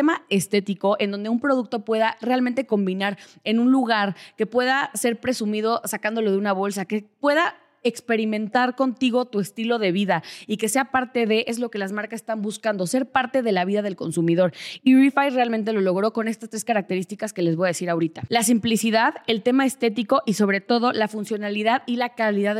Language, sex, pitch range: Spanish, female, 200-245 Hz